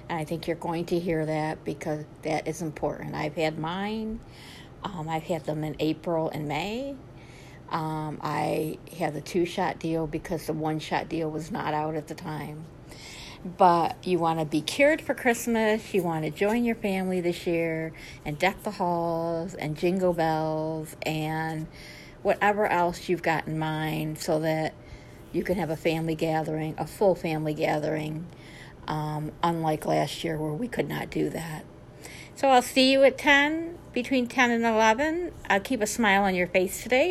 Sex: female